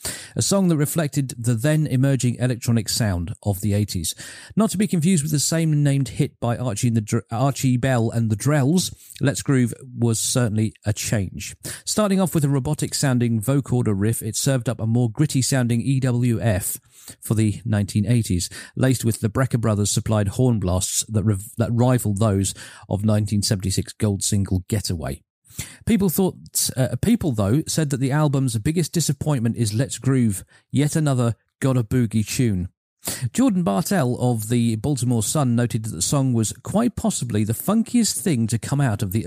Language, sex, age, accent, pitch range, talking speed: English, male, 40-59, British, 110-145 Hz, 160 wpm